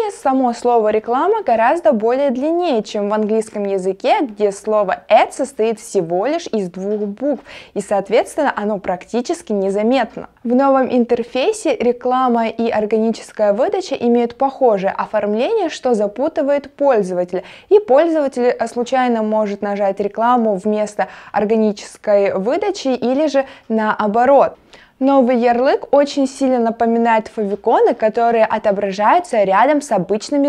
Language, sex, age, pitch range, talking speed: Russian, female, 20-39, 210-265 Hz, 120 wpm